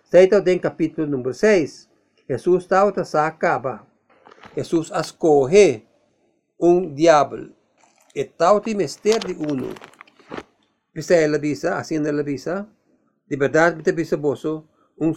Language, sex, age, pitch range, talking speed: English, male, 50-69, 150-180 Hz, 110 wpm